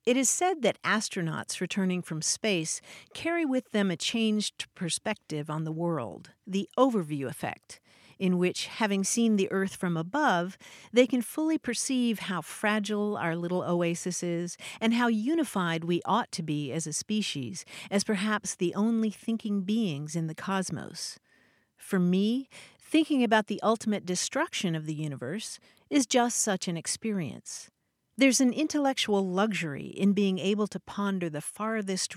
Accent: American